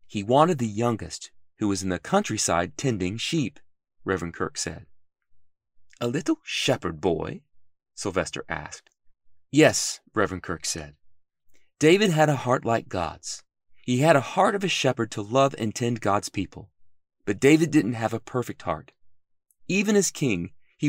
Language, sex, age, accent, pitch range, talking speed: English, male, 30-49, American, 90-130 Hz, 155 wpm